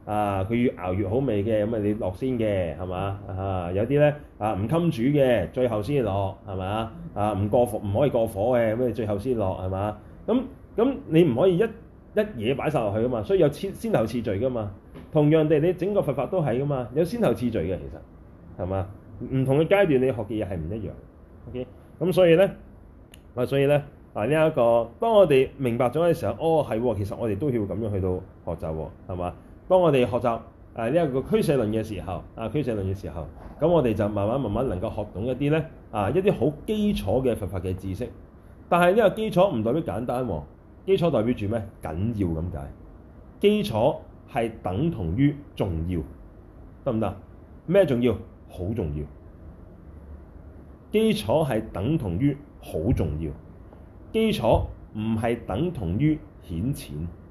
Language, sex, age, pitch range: Chinese, male, 20-39, 90-140 Hz